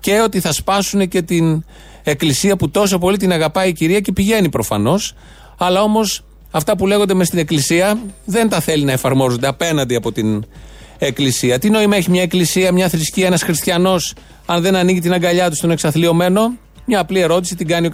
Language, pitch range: Greek, 140-185 Hz